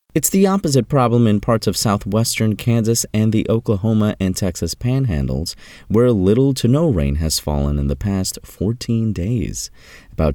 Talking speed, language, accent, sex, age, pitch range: 160 wpm, English, American, male, 30-49, 80-115 Hz